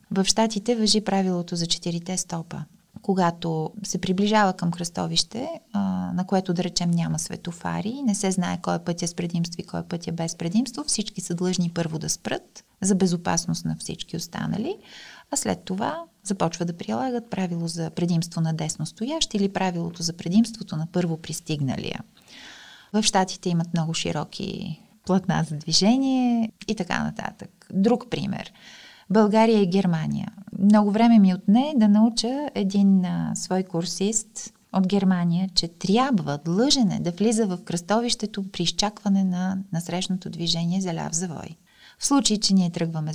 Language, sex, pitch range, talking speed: Bulgarian, female, 170-215 Hz, 150 wpm